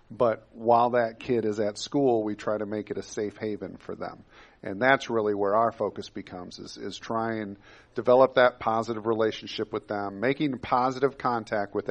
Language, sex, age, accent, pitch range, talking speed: English, male, 40-59, American, 105-125 Hz, 190 wpm